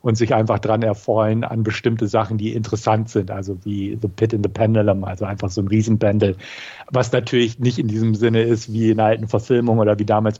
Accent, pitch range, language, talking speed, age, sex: German, 110-130 Hz, German, 215 wpm, 50-69, male